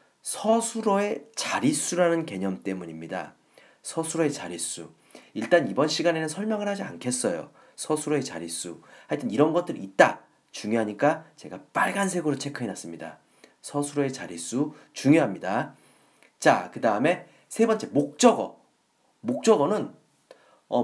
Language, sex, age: Korean, male, 40-59